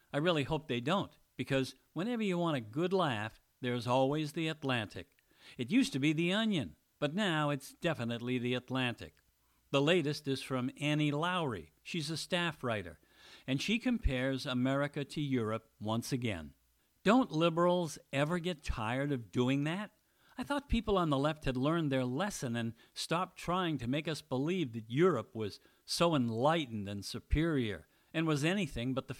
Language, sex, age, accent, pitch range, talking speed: English, male, 50-69, American, 125-170 Hz, 170 wpm